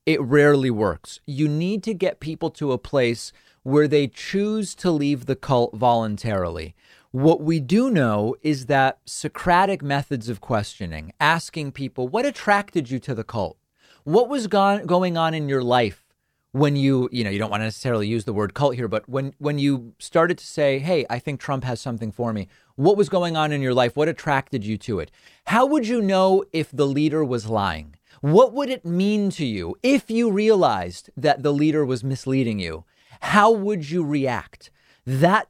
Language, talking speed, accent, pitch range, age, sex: English, 195 wpm, American, 120-160 Hz, 40-59, male